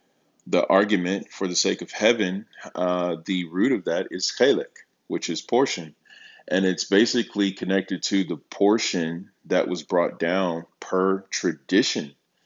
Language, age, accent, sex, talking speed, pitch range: English, 20-39, American, male, 145 wpm, 85-95 Hz